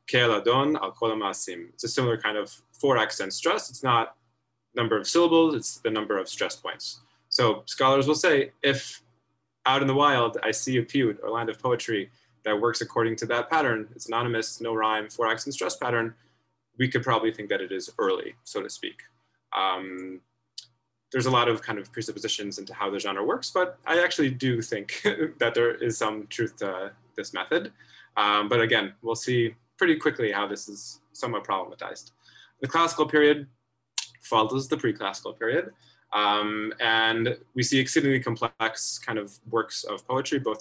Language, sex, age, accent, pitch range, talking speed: English, male, 20-39, American, 105-130 Hz, 175 wpm